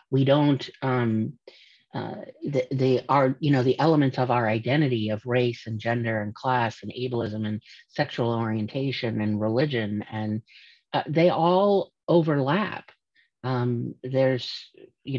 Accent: American